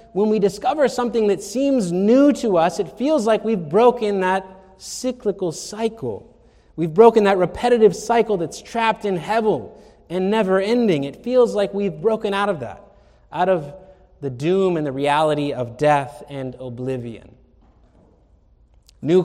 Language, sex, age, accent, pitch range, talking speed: English, male, 30-49, American, 145-205 Hz, 150 wpm